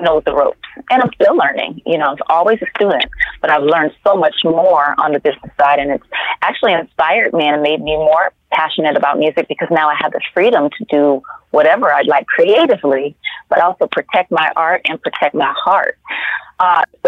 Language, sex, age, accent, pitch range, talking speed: English, female, 30-49, American, 145-190 Hz, 200 wpm